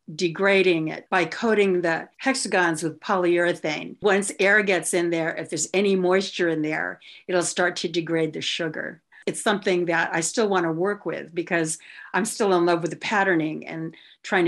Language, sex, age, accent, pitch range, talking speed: English, female, 50-69, American, 165-210 Hz, 180 wpm